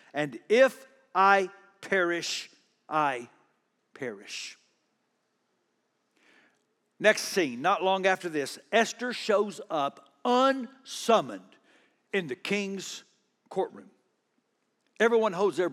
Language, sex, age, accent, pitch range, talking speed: English, male, 60-79, American, 205-310 Hz, 90 wpm